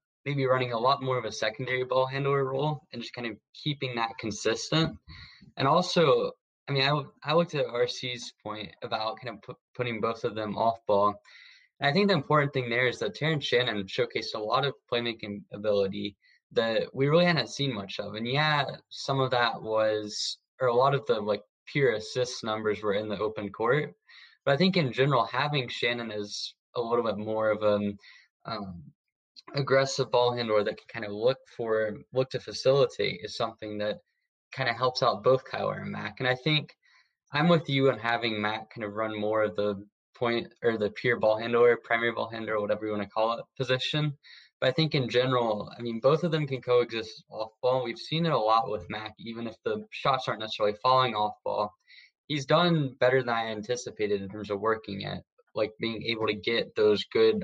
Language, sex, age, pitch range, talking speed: English, male, 10-29, 110-140 Hz, 210 wpm